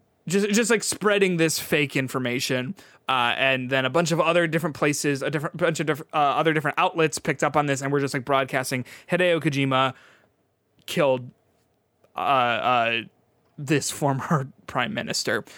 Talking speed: 165 wpm